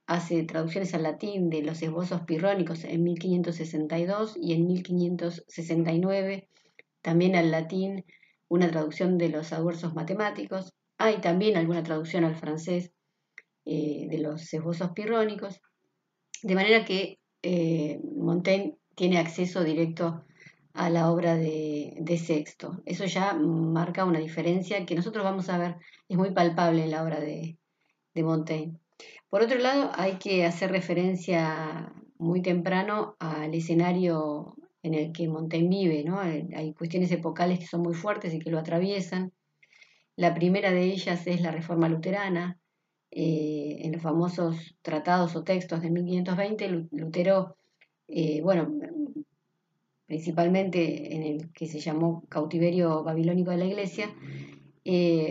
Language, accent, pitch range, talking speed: Spanish, Argentinian, 160-185 Hz, 135 wpm